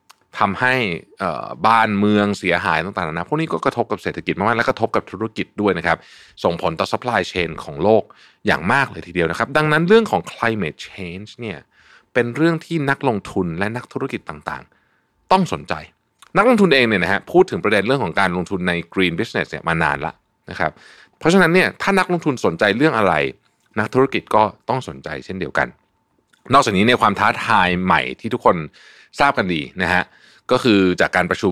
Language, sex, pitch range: Thai, male, 95-150 Hz